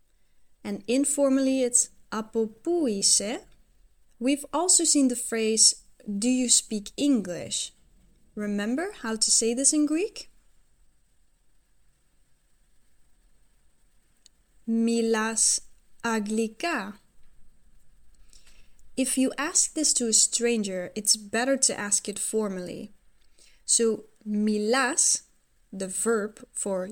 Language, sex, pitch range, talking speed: English, female, 215-255 Hz, 90 wpm